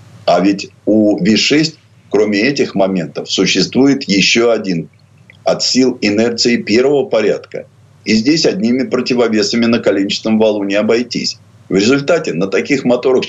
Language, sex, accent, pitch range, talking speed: Russian, male, native, 105-140 Hz, 130 wpm